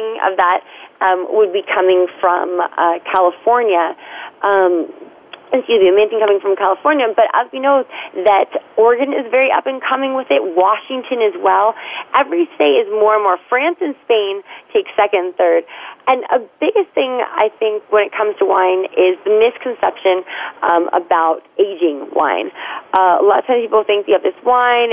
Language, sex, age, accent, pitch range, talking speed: English, female, 30-49, American, 185-265 Hz, 185 wpm